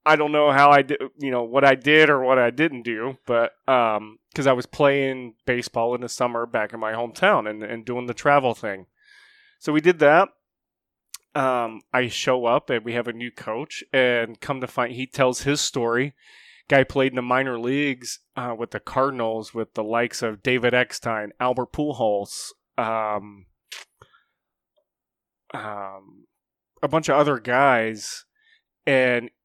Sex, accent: male, American